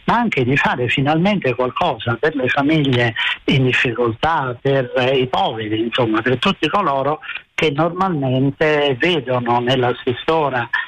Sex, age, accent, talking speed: male, 60-79, native, 115 wpm